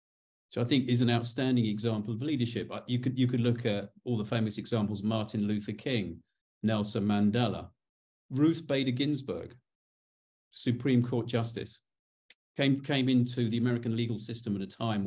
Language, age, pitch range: English, 50-69, 105-125 Hz